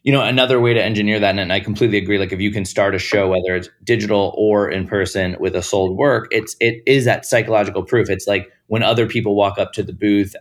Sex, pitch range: male, 95-115 Hz